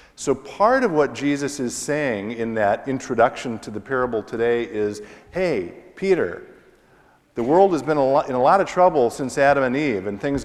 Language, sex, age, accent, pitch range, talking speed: English, male, 50-69, American, 115-150 Hz, 185 wpm